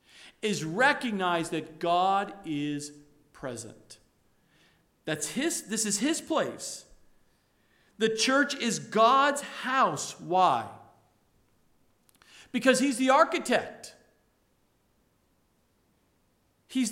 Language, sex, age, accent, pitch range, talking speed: English, male, 50-69, American, 205-275 Hz, 80 wpm